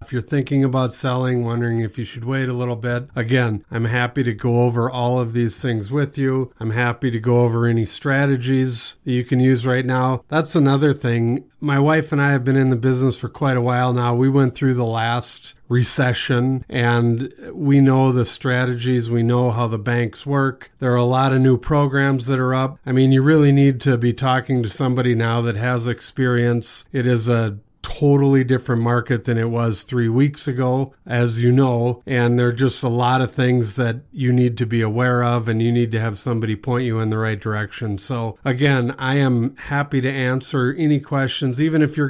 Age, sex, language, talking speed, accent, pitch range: 50-69, male, English, 210 wpm, American, 120-135 Hz